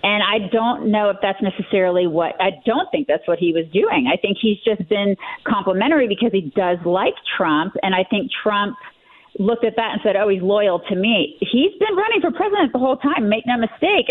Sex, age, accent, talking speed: female, 40-59, American, 220 wpm